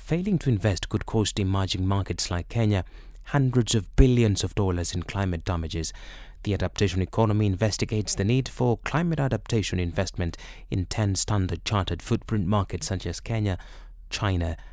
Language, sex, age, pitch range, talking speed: English, male, 30-49, 95-125 Hz, 150 wpm